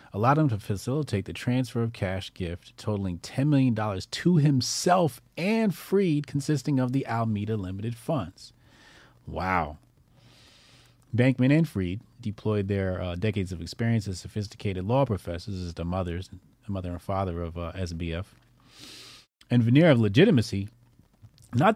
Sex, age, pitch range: male, 30-49, 95-125 Hz